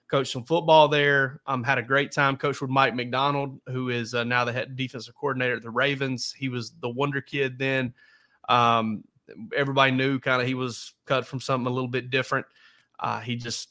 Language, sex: English, male